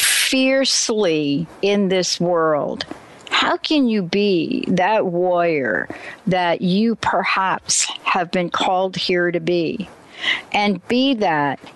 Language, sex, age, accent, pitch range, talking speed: English, female, 60-79, American, 170-210 Hz, 110 wpm